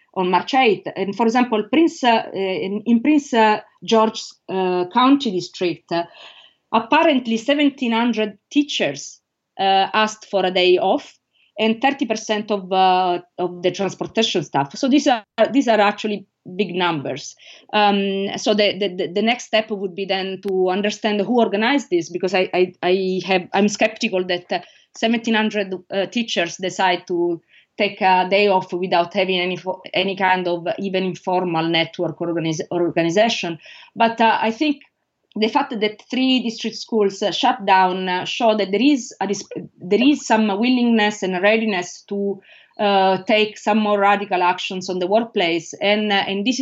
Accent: Italian